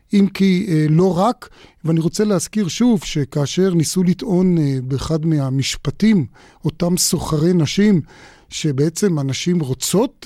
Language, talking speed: Hebrew, 125 wpm